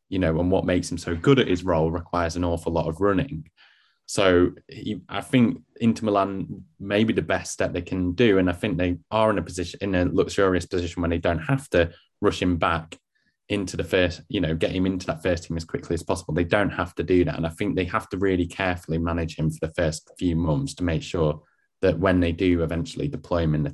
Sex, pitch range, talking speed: male, 80-90 Hz, 250 wpm